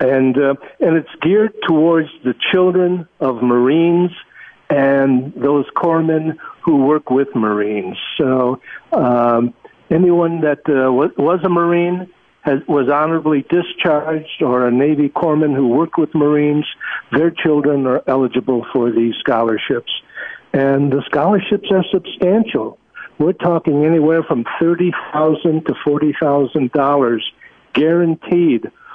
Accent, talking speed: American, 120 wpm